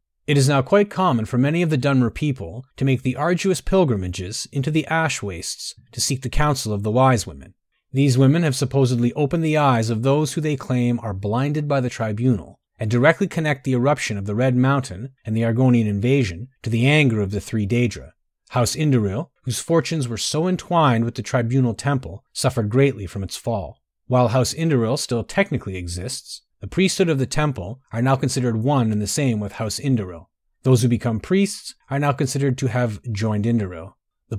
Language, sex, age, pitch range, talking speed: English, male, 30-49, 115-145 Hz, 200 wpm